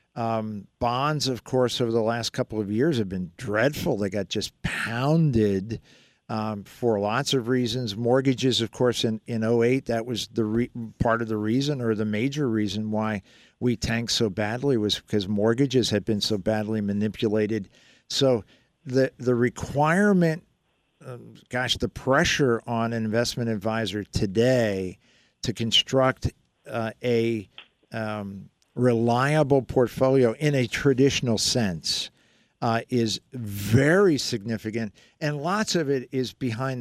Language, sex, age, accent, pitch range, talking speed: English, male, 50-69, American, 110-130 Hz, 140 wpm